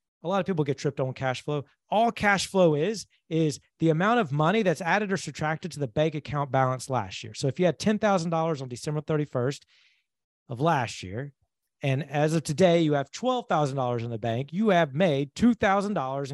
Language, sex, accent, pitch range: English, male, American, 120-165 Hz